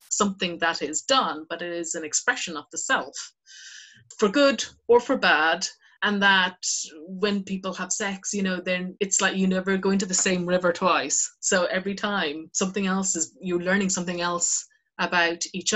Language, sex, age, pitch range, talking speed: English, female, 30-49, 175-220 Hz, 185 wpm